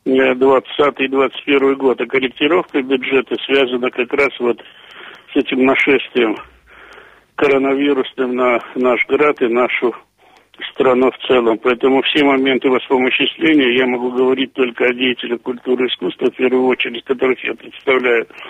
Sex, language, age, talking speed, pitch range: male, Russian, 70-89, 130 wpm, 125-135 Hz